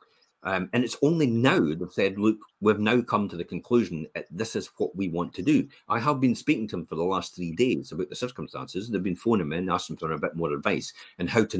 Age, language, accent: 40-59, English, British